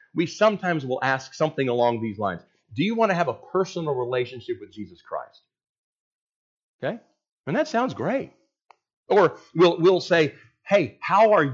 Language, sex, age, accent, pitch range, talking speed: English, male, 40-59, American, 130-195 Hz, 160 wpm